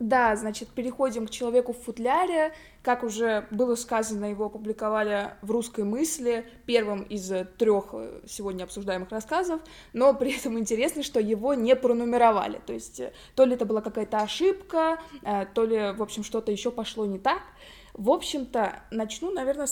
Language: Russian